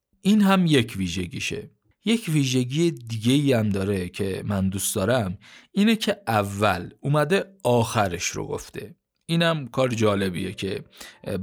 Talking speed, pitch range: 130 wpm, 100-130 Hz